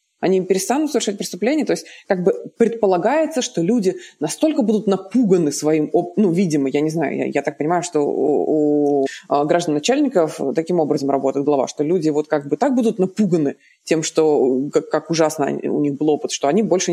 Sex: female